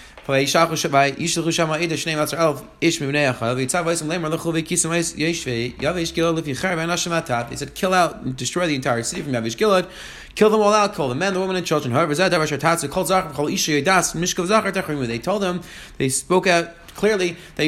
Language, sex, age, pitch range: English, male, 30-49, 140-185 Hz